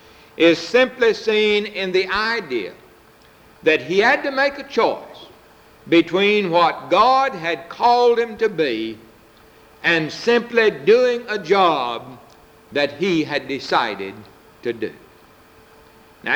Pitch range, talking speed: 160-255 Hz, 120 wpm